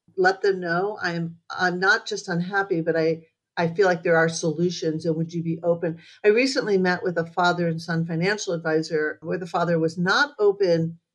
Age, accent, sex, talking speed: 50-69, American, female, 200 wpm